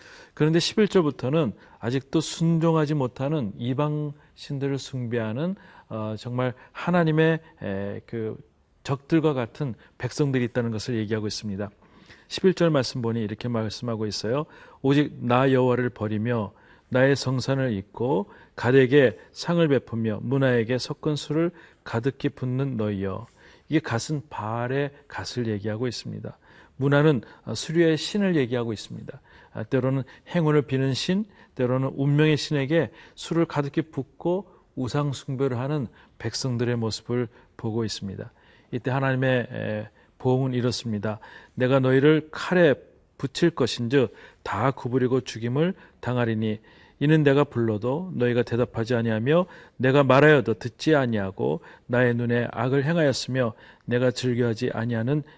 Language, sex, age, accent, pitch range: Korean, male, 40-59, native, 115-150 Hz